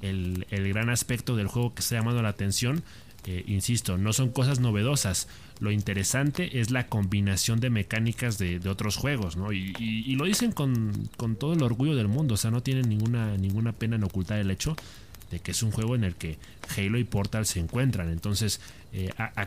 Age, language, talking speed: 30-49, Spanish, 210 wpm